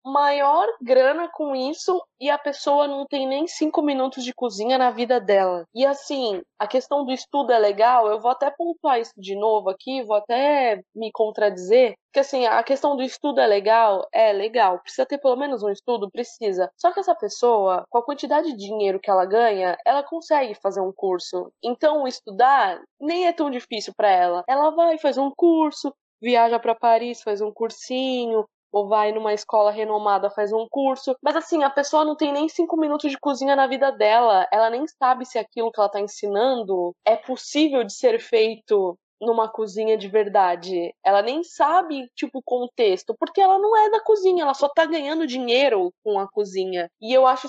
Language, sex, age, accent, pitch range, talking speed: Portuguese, female, 20-39, Brazilian, 215-285 Hz, 195 wpm